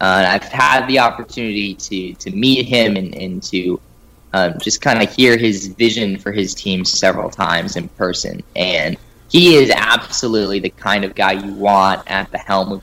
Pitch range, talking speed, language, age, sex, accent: 100-120 Hz, 185 wpm, English, 20-39, male, American